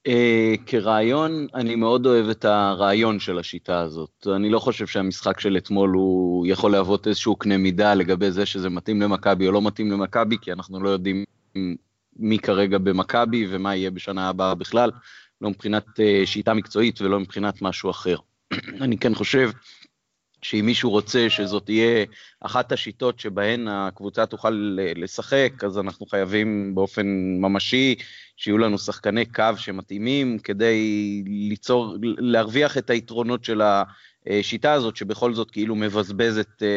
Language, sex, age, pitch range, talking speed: Hebrew, male, 30-49, 100-115 Hz, 140 wpm